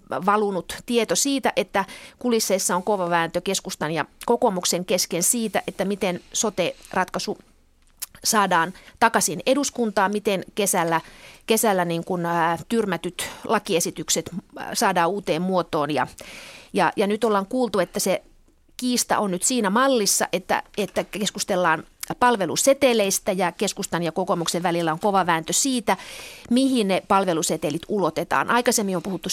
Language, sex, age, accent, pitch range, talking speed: Finnish, female, 30-49, native, 180-235 Hz, 130 wpm